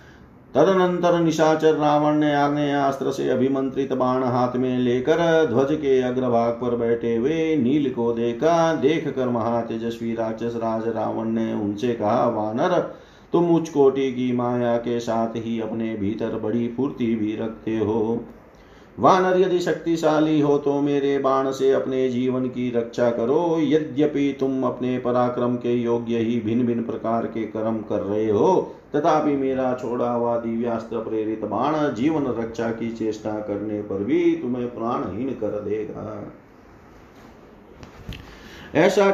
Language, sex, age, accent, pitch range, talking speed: Hindi, male, 40-59, native, 115-150 Hz, 140 wpm